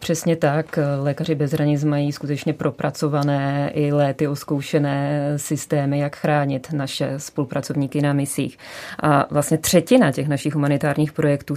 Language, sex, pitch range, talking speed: Czech, female, 140-155 Hz, 125 wpm